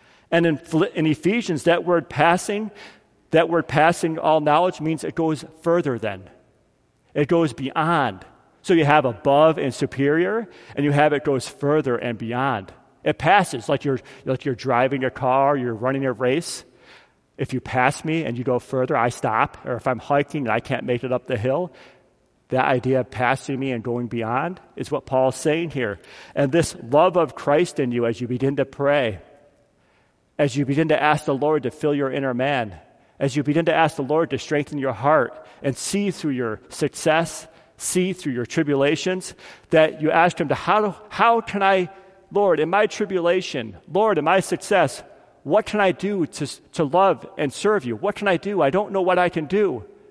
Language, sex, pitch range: English, male, 130-170 Hz